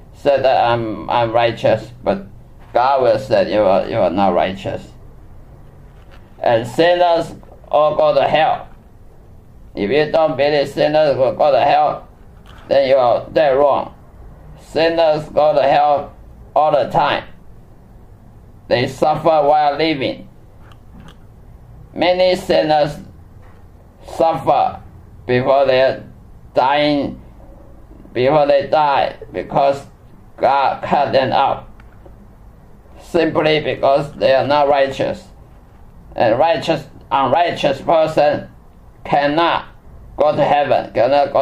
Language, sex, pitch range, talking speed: English, male, 110-160 Hz, 110 wpm